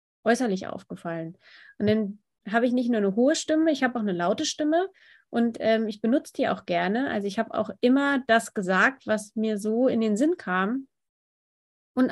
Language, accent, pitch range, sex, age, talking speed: German, German, 210-255 Hz, female, 30-49, 195 wpm